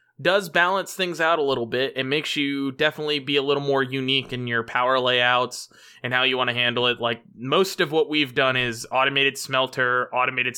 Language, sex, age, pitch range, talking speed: English, male, 20-39, 120-135 Hz, 210 wpm